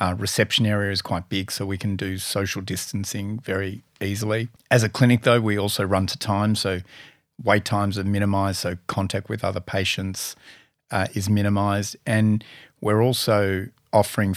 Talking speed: 165 wpm